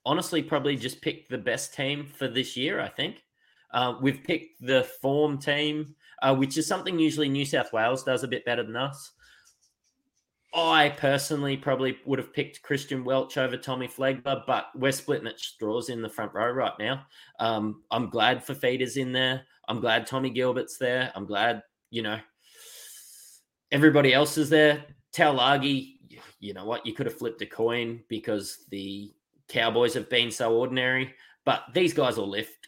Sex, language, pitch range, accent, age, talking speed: male, English, 110-140 Hz, Australian, 20-39, 175 wpm